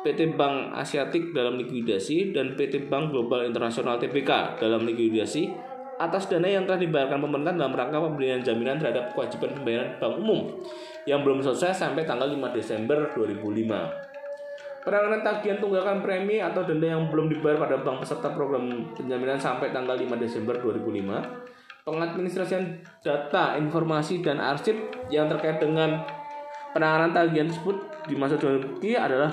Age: 20-39